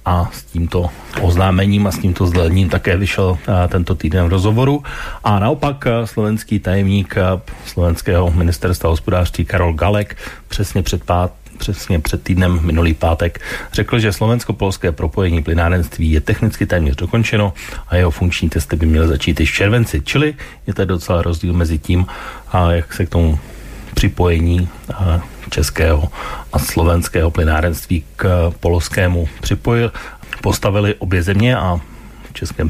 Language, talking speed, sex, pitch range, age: Slovak, 145 wpm, male, 85-100 Hz, 40-59